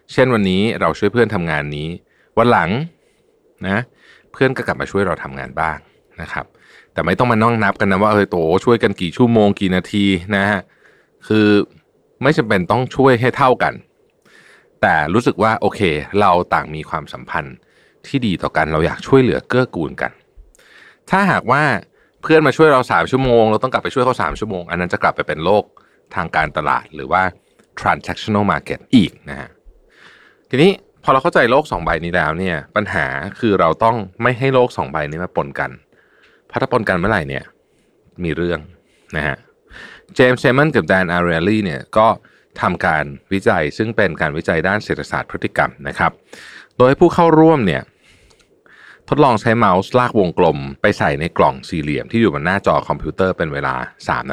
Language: Thai